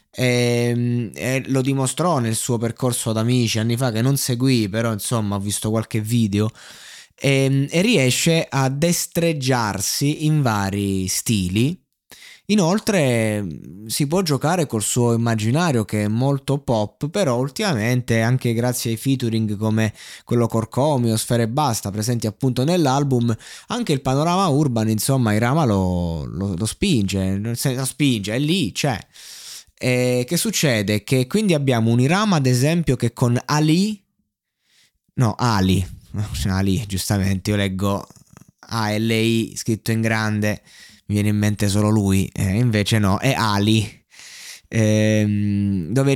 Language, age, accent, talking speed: Italian, 20-39, native, 135 wpm